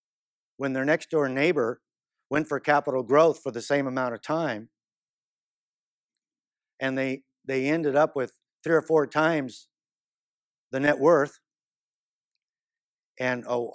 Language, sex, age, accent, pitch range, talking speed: English, male, 50-69, American, 130-185 Hz, 125 wpm